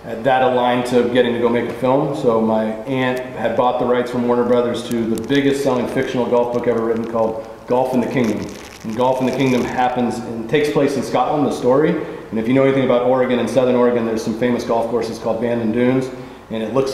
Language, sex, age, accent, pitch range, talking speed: English, male, 40-59, American, 120-135 Hz, 240 wpm